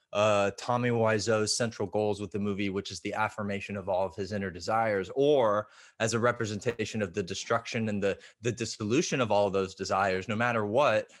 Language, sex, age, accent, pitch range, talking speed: English, male, 20-39, American, 105-135 Hz, 200 wpm